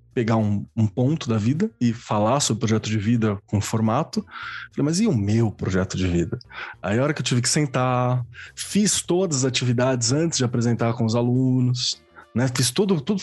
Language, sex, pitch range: Portuguese, male, 120-170 Hz